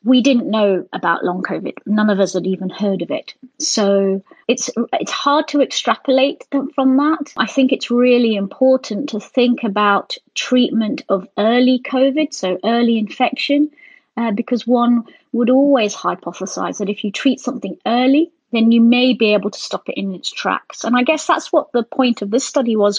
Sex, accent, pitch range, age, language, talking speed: female, British, 205-265 Hz, 30-49, English, 185 wpm